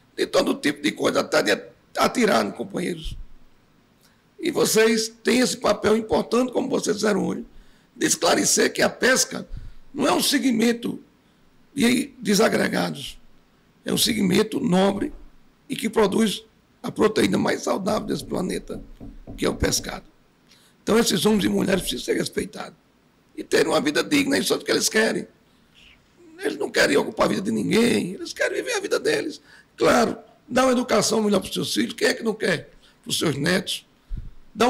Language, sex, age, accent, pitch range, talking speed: Portuguese, male, 60-79, Brazilian, 215-275 Hz, 175 wpm